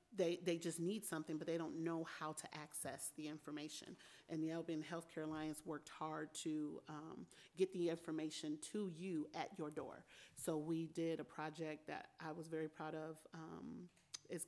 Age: 30-49